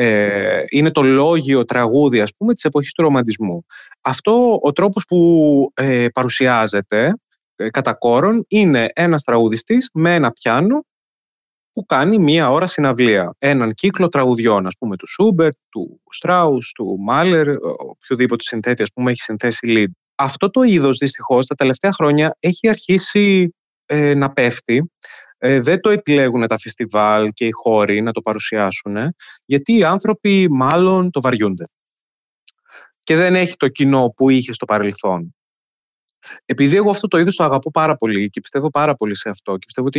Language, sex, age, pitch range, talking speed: Greek, male, 20-39, 115-170 Hz, 155 wpm